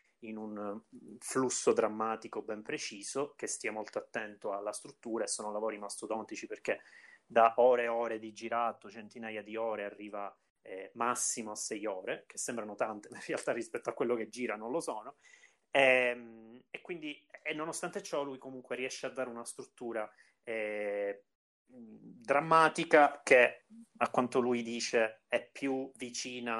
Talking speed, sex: 155 wpm, male